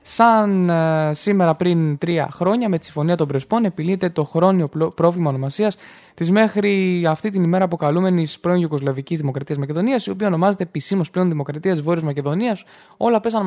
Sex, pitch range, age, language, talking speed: male, 160-210 Hz, 20-39, Greek, 155 wpm